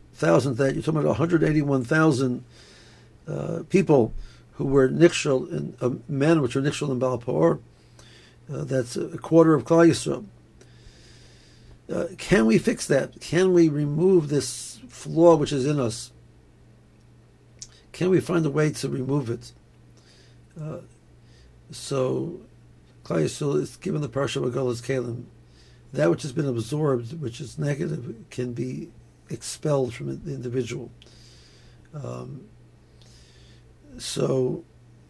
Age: 60-79